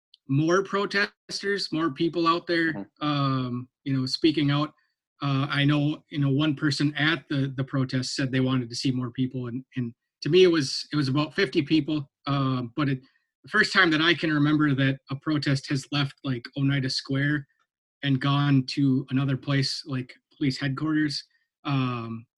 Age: 30-49